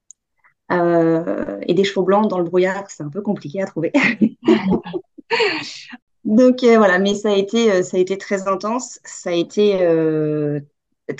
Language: French